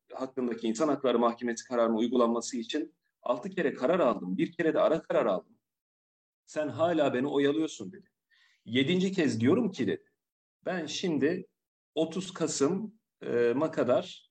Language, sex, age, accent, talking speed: Turkish, male, 40-59, native, 135 wpm